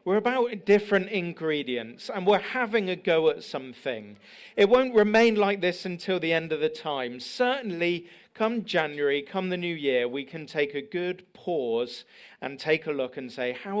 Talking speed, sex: 185 wpm, male